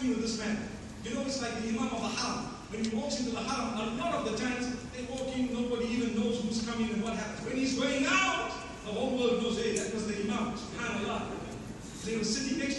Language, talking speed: English, 245 wpm